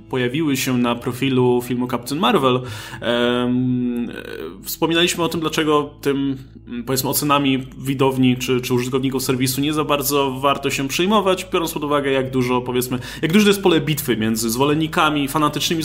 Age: 20-39